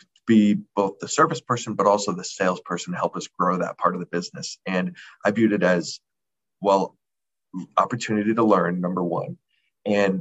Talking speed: 175 wpm